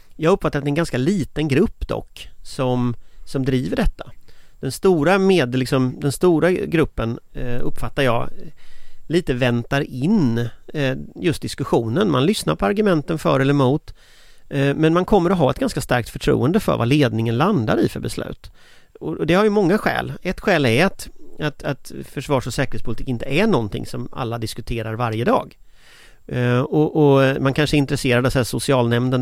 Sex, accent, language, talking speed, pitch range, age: male, native, Swedish, 170 wpm, 125-160 Hz, 30-49